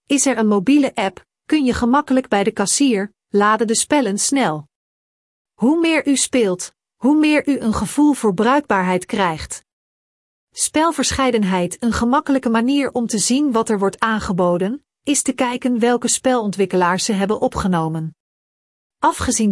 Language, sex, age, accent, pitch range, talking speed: Dutch, female, 40-59, Dutch, 200-265 Hz, 145 wpm